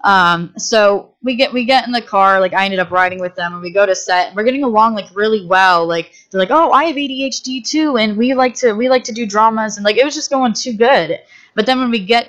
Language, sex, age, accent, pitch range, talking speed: English, female, 20-39, American, 180-245 Hz, 280 wpm